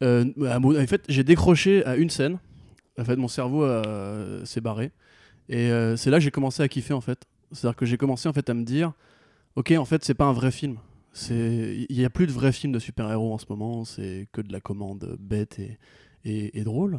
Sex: male